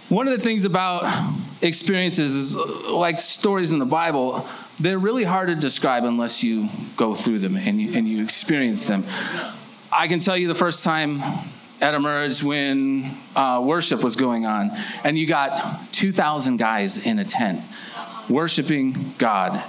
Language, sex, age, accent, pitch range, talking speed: English, male, 30-49, American, 125-185 Hz, 160 wpm